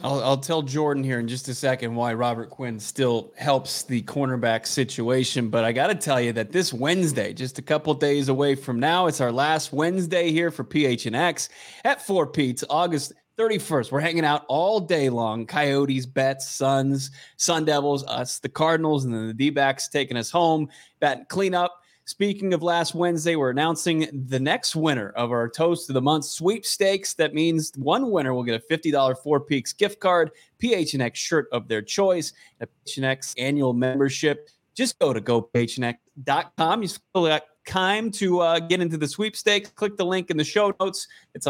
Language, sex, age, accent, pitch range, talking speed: English, male, 20-39, American, 130-170 Hz, 190 wpm